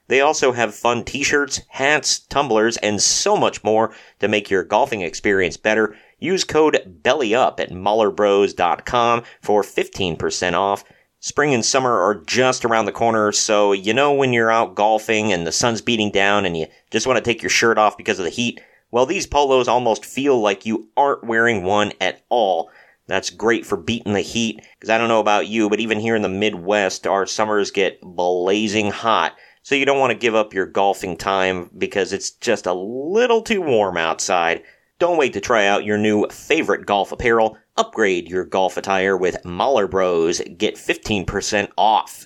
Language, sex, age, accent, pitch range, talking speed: English, male, 40-59, American, 100-125 Hz, 185 wpm